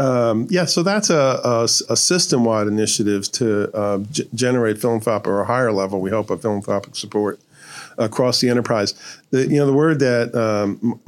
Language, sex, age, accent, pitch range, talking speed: English, male, 50-69, American, 105-125 Hz, 170 wpm